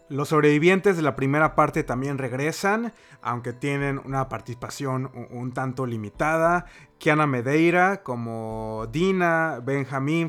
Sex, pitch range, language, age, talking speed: male, 125-160 Hz, Spanish, 30-49, 120 wpm